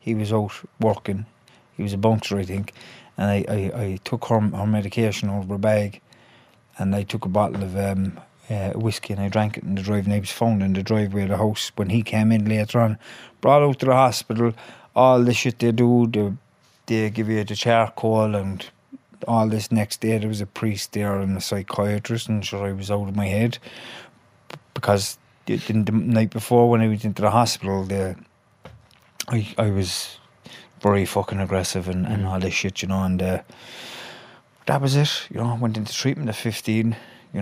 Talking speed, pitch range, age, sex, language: 210 wpm, 100-115 Hz, 30-49, male, English